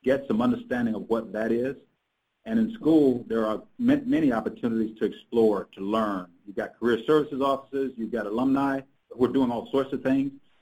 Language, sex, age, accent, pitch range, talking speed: English, male, 50-69, American, 110-130 Hz, 185 wpm